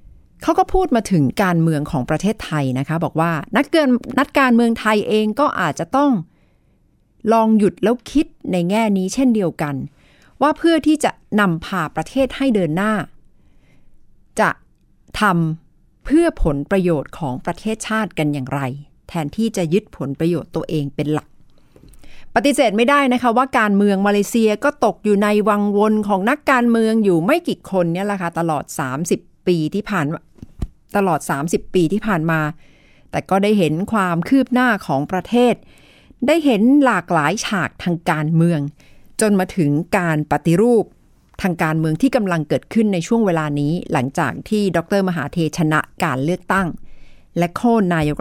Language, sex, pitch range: Thai, female, 160-220 Hz